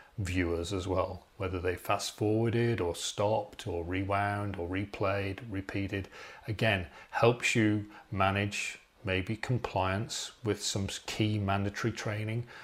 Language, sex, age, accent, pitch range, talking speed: Hebrew, male, 30-49, British, 95-110 Hz, 120 wpm